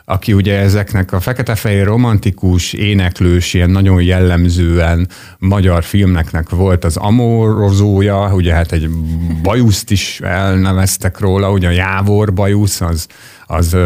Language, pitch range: Hungarian, 90-105 Hz